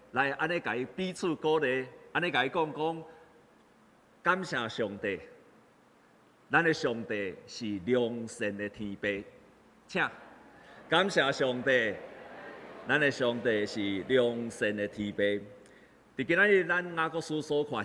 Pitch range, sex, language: 125-190 Hz, male, Chinese